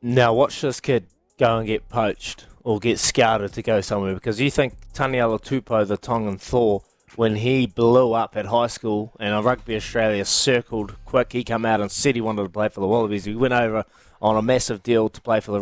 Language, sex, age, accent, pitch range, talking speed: English, male, 20-39, Australian, 105-140 Hz, 220 wpm